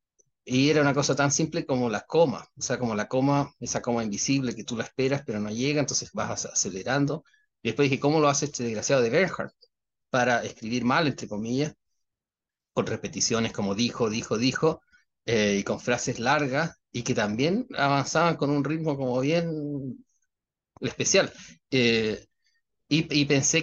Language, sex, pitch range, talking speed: Spanish, male, 115-145 Hz, 170 wpm